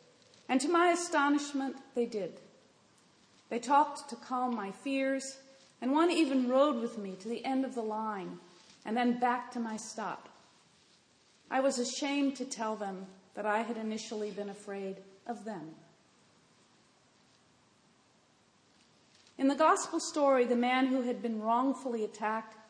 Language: English